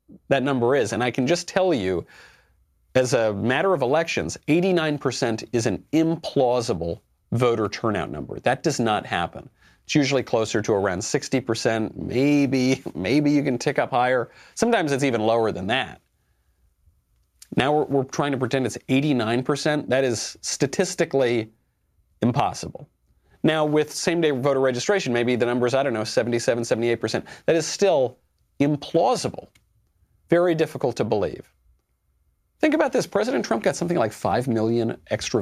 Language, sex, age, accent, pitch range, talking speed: English, male, 40-59, American, 110-145 Hz, 150 wpm